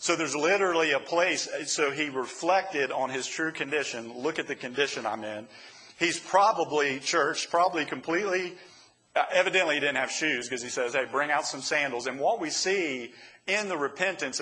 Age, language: 40-59, English